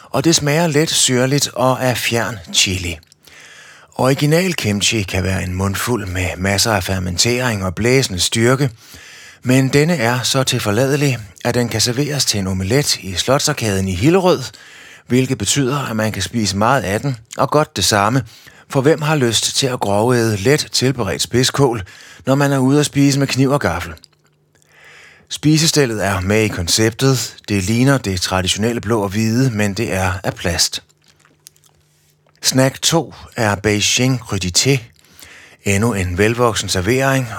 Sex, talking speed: male, 155 wpm